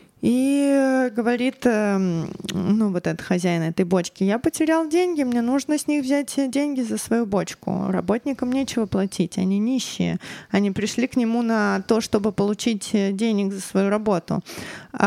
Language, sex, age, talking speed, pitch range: Russian, female, 20-39, 145 wpm, 190-240 Hz